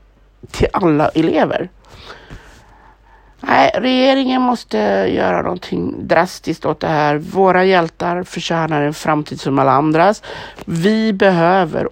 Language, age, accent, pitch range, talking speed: Swedish, 50-69, native, 165-240 Hz, 110 wpm